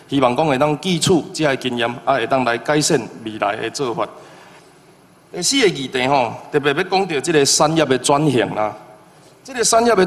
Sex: male